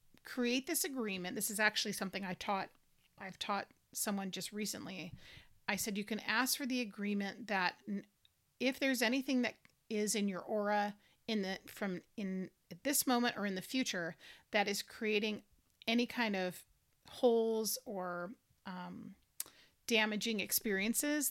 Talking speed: 145 wpm